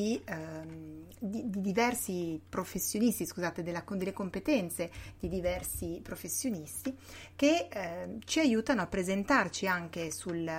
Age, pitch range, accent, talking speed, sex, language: 30-49, 170-210 Hz, native, 100 wpm, female, Italian